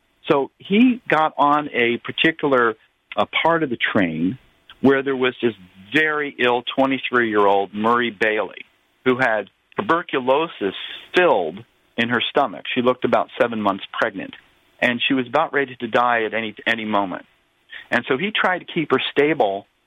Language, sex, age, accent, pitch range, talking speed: English, male, 50-69, American, 115-150 Hz, 155 wpm